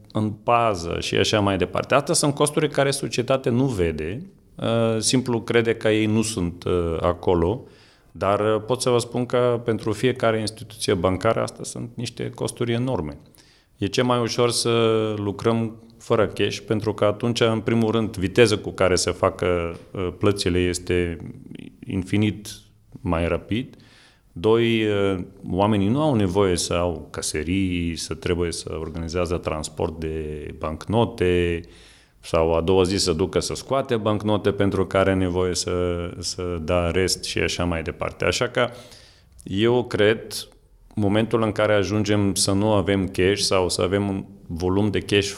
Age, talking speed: 40-59, 150 wpm